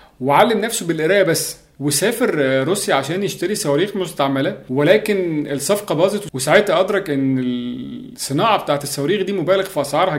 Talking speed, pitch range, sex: 135 wpm, 140-195 Hz, male